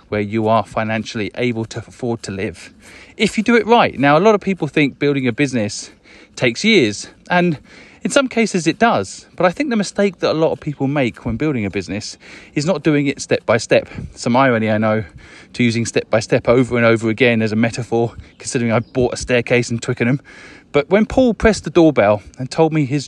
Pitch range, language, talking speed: 115-175 Hz, English, 225 wpm